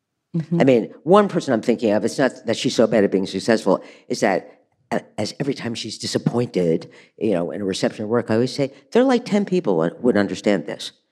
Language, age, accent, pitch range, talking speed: English, 50-69, American, 110-185 Hz, 220 wpm